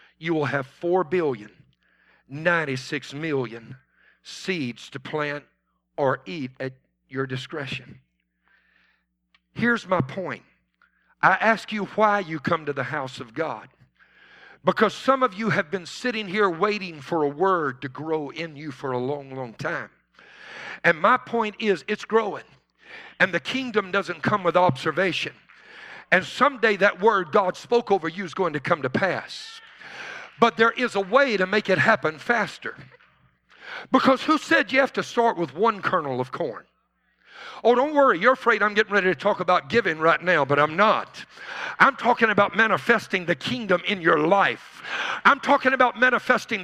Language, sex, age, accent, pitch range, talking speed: English, male, 50-69, American, 160-245 Hz, 165 wpm